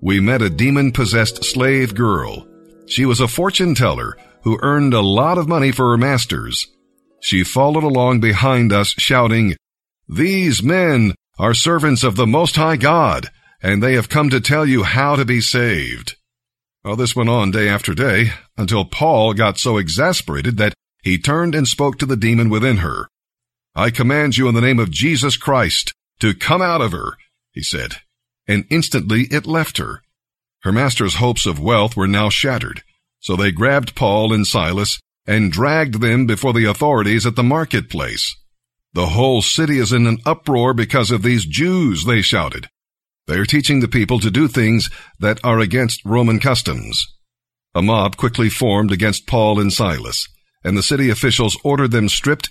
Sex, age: male, 50-69